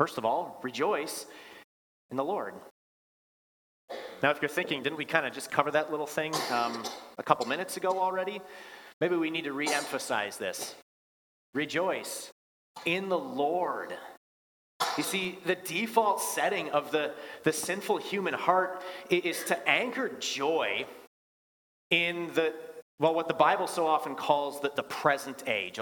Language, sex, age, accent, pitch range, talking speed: English, male, 30-49, American, 145-185 Hz, 150 wpm